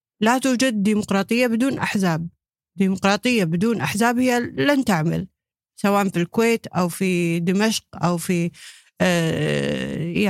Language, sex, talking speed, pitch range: Arabic, female, 110 wpm, 175-230 Hz